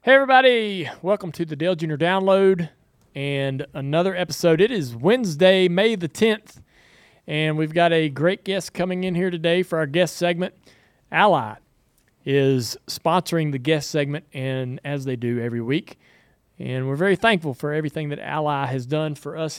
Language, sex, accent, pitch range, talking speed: English, male, American, 140-175 Hz, 170 wpm